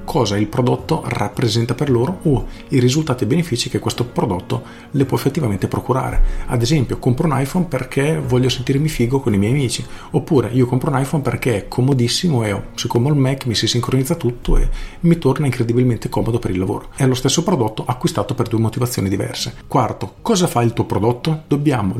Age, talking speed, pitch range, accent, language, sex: 40-59, 195 wpm, 110-130 Hz, native, Italian, male